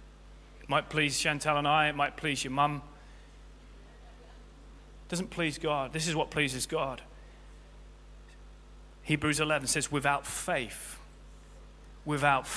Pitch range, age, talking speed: 130-170 Hz, 30-49, 120 wpm